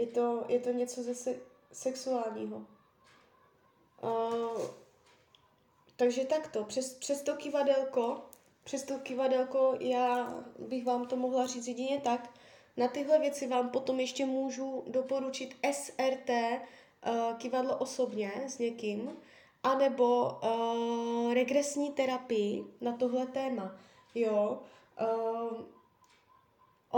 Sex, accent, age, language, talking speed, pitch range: female, native, 20-39, Czech, 105 wpm, 235-270 Hz